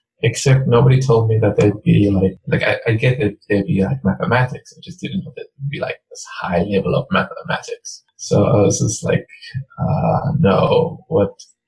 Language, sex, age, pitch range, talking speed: English, male, 20-39, 105-135 Hz, 200 wpm